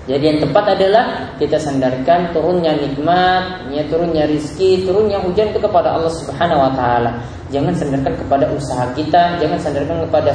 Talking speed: 150 wpm